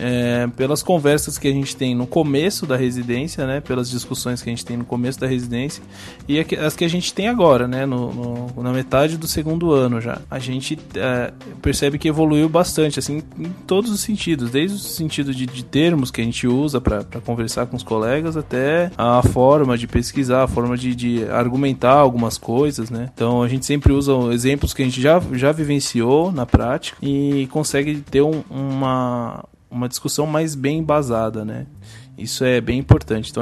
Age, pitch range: 20-39, 120-150 Hz